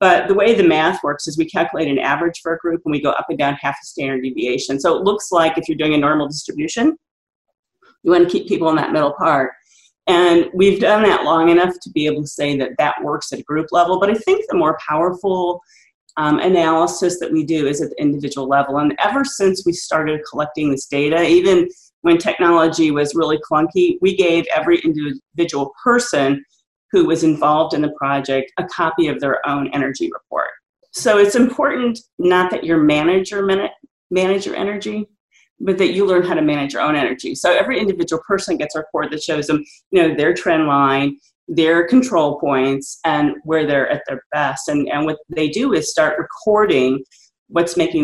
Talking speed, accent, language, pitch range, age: 205 wpm, American, English, 150-200 Hz, 40-59